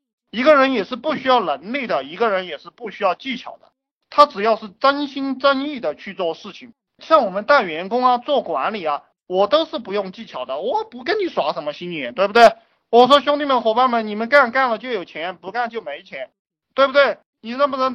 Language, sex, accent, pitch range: Chinese, male, native, 195-270 Hz